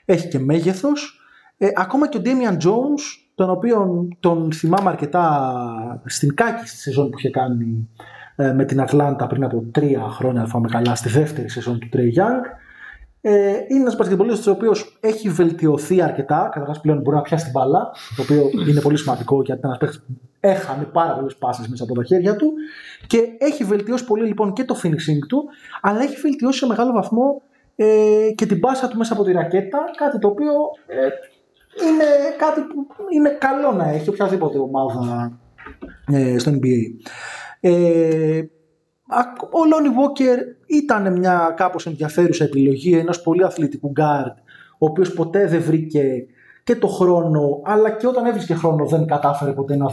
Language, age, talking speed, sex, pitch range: Greek, 20-39, 155 wpm, male, 140-225 Hz